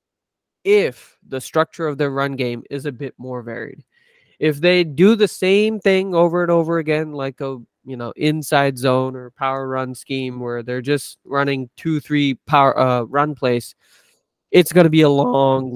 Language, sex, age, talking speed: English, male, 20-39, 185 wpm